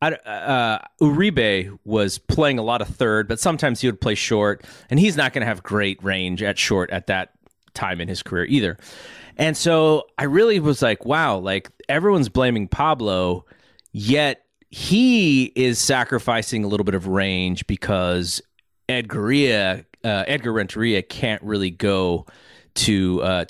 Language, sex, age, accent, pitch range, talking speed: English, male, 30-49, American, 100-140 Hz, 155 wpm